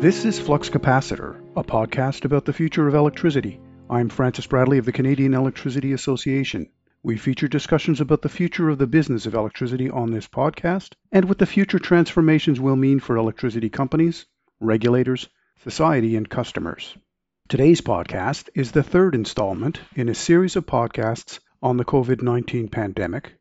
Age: 50-69